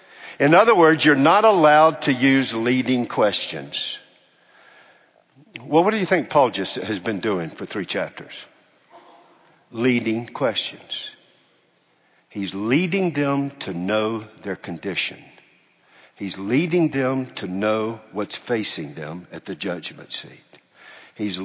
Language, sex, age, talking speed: English, male, 60-79, 125 wpm